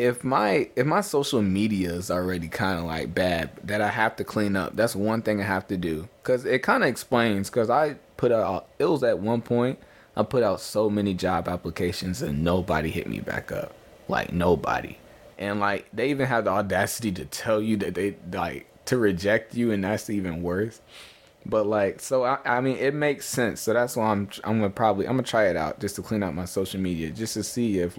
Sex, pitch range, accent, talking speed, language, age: male, 90-115 Hz, American, 230 wpm, English, 20-39